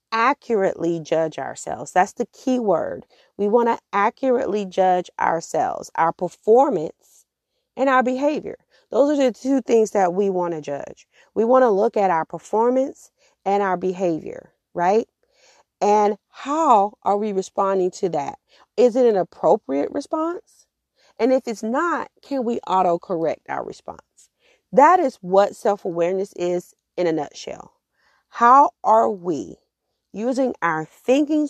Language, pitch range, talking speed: English, 180-255 Hz, 145 wpm